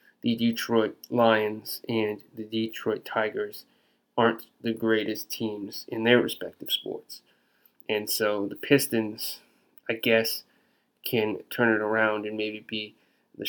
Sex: male